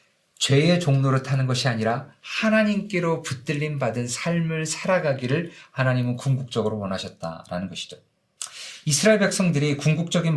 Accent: native